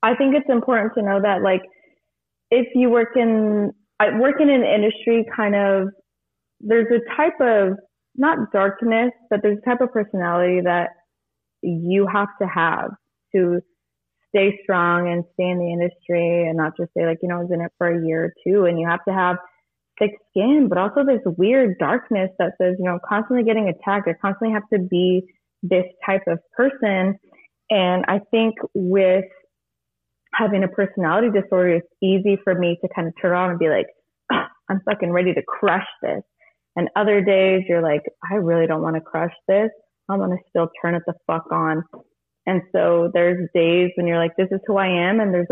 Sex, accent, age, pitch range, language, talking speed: female, American, 20-39, 175-210 Hz, English, 195 wpm